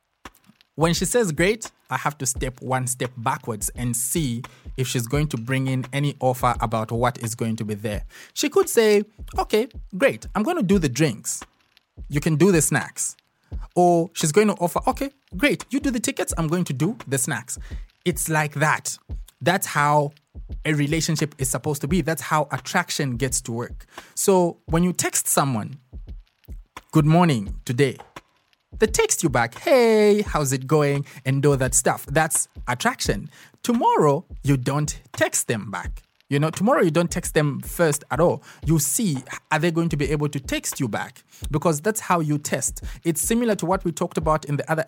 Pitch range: 135-180 Hz